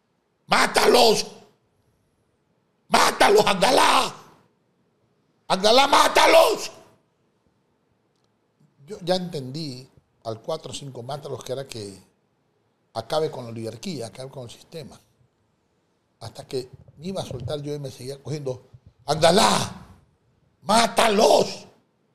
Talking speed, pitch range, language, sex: 100 wpm, 115-165 Hz, Spanish, male